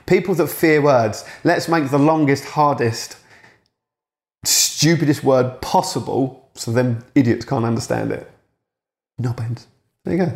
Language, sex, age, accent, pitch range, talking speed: English, male, 30-49, British, 110-135 Hz, 125 wpm